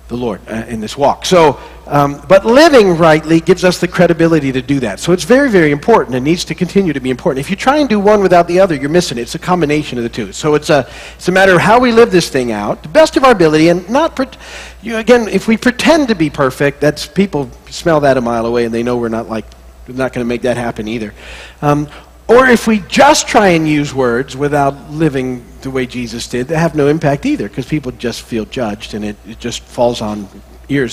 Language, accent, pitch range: English, American, 125-185 Hz